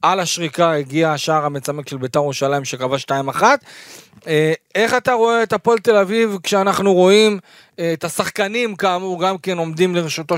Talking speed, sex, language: 150 wpm, male, Hebrew